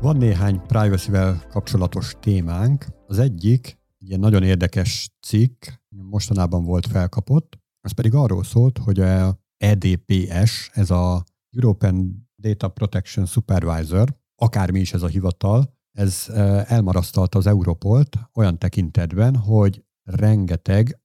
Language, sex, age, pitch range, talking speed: Hungarian, male, 50-69, 95-110 Hz, 115 wpm